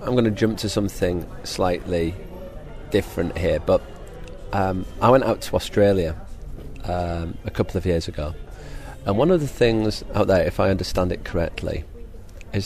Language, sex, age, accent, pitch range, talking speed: English, male, 40-59, British, 85-100 Hz, 165 wpm